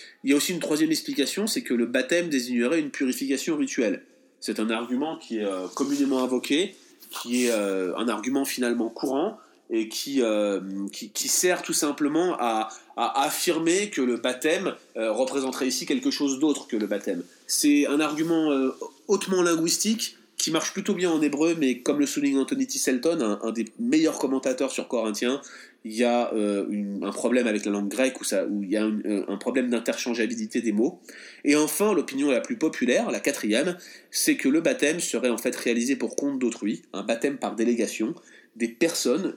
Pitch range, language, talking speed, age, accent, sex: 115-175 Hz, French, 180 wpm, 30-49, French, male